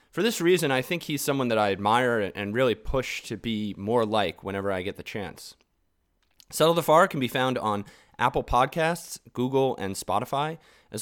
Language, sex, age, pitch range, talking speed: English, male, 20-39, 105-140 Hz, 190 wpm